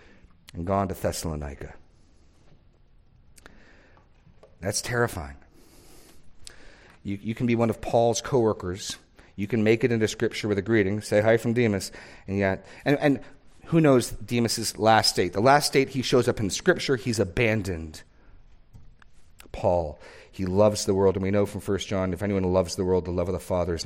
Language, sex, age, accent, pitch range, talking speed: English, male, 40-59, American, 90-120 Hz, 170 wpm